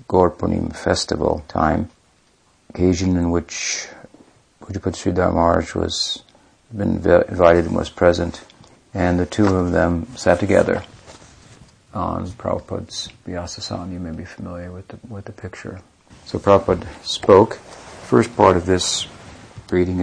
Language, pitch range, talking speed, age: English, 80-100 Hz, 125 wpm, 50-69